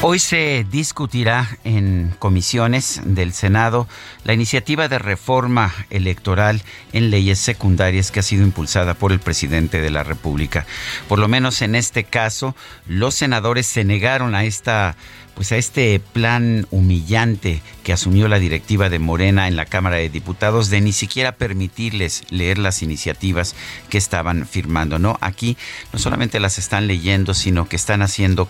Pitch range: 90-115 Hz